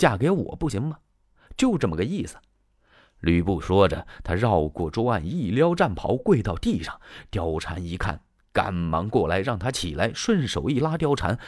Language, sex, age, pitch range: Chinese, male, 30-49, 90-145 Hz